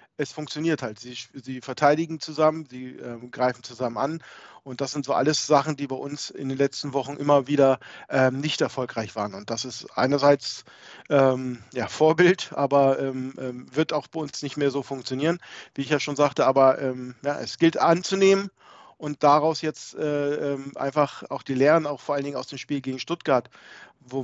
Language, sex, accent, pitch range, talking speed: German, male, German, 125-145 Hz, 190 wpm